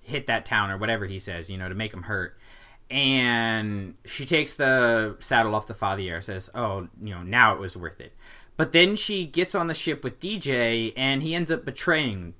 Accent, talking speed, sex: American, 215 wpm, male